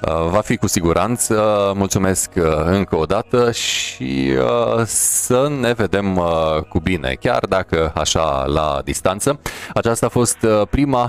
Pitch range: 80-110 Hz